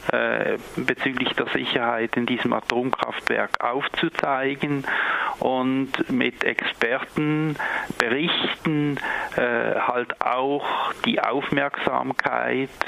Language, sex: German, male